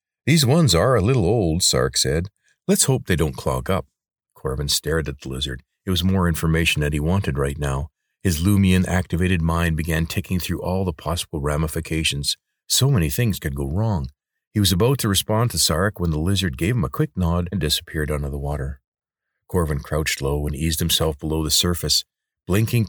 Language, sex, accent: English, male, American